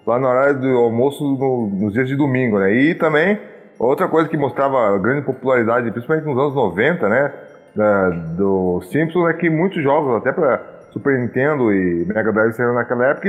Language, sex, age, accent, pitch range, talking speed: Portuguese, male, 20-39, Brazilian, 115-145 Hz, 190 wpm